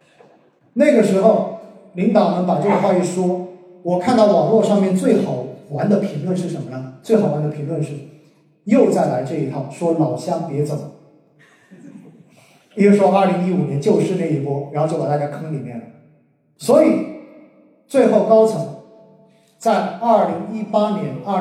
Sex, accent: male, native